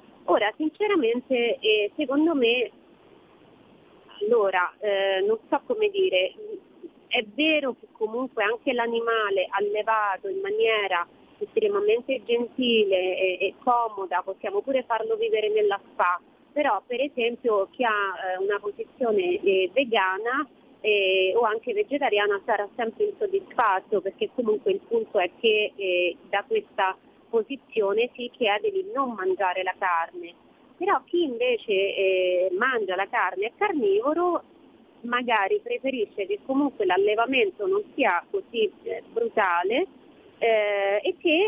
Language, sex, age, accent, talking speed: Italian, female, 30-49, native, 125 wpm